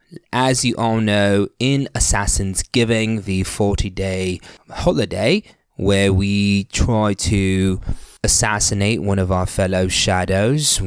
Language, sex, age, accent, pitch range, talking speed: English, male, 20-39, British, 95-125 Hz, 110 wpm